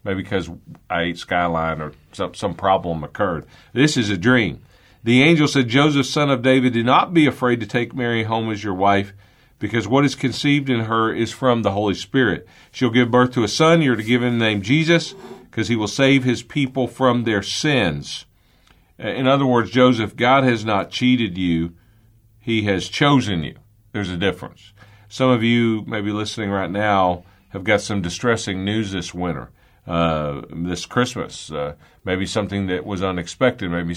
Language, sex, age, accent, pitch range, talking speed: English, male, 50-69, American, 95-125 Hz, 185 wpm